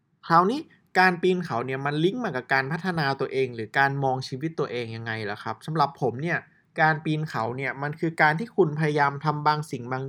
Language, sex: Thai, male